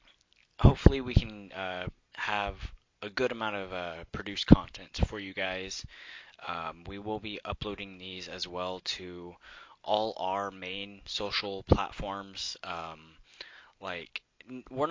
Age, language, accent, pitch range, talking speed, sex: 20-39, English, American, 90-105 Hz, 130 wpm, male